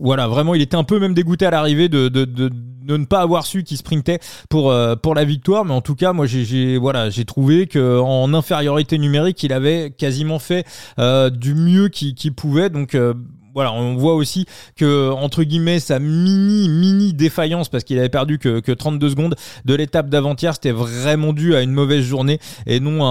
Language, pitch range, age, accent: French, 130-160 Hz, 20-39, French